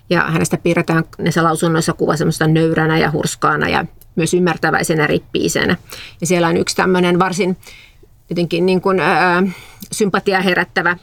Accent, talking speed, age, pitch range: native, 140 wpm, 30-49, 175-200 Hz